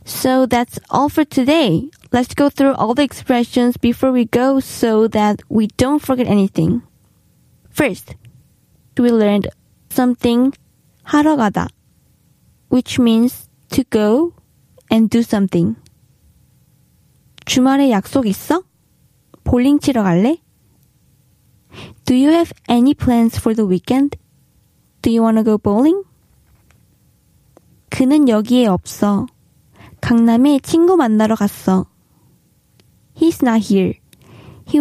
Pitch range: 220-270 Hz